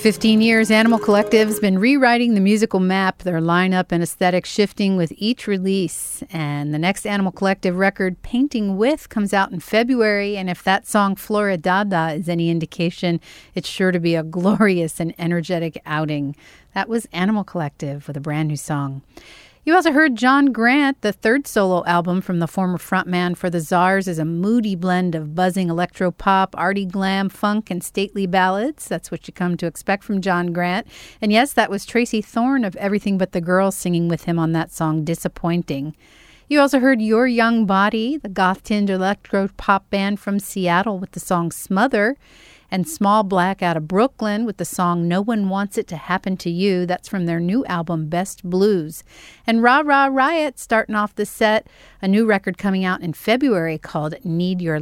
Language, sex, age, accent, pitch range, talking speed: English, female, 40-59, American, 170-210 Hz, 185 wpm